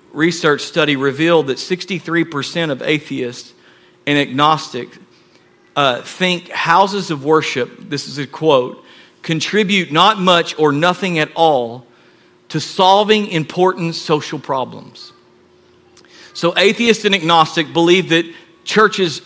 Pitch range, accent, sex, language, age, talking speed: 170-265 Hz, American, male, English, 50-69, 115 wpm